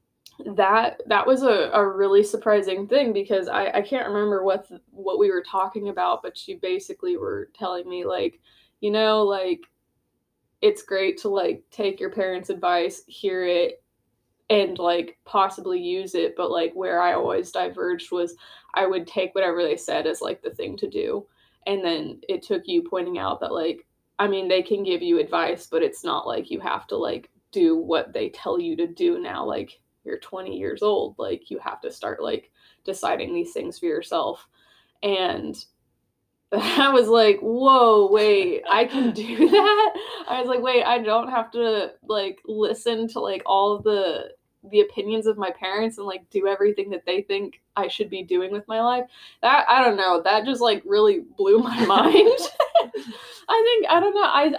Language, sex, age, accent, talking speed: English, female, 20-39, American, 190 wpm